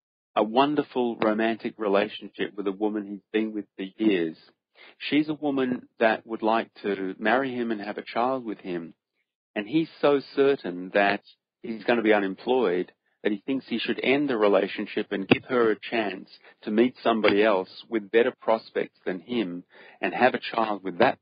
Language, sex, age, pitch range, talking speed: English, male, 40-59, 100-115 Hz, 185 wpm